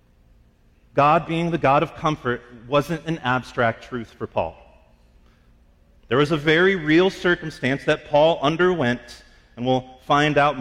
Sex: male